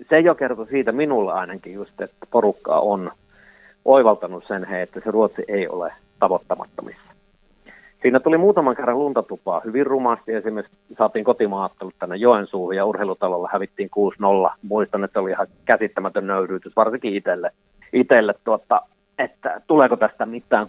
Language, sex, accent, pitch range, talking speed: Finnish, male, native, 100-135 Hz, 140 wpm